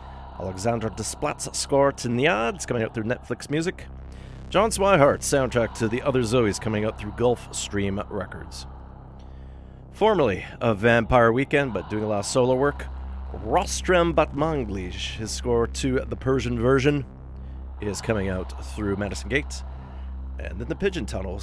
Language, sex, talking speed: English, male, 150 wpm